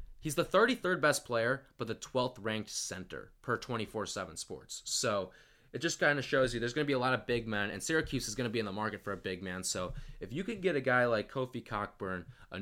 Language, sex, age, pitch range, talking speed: English, male, 20-39, 100-135 Hz, 250 wpm